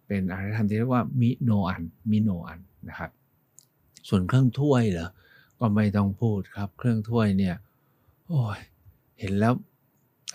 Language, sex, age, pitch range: Thai, male, 60-79, 100-130 Hz